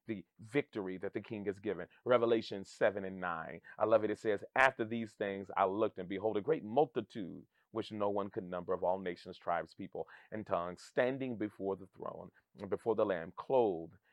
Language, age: English, 30-49